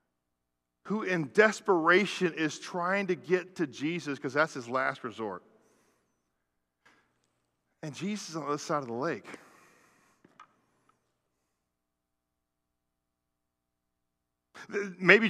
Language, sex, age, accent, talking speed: English, male, 40-59, American, 95 wpm